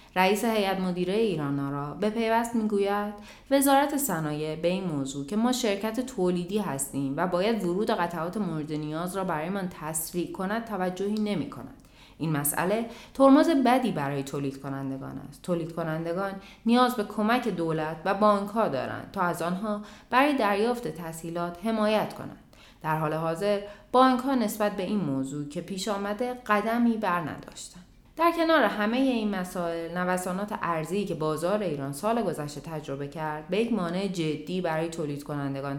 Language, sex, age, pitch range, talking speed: Persian, female, 30-49, 155-215 Hz, 160 wpm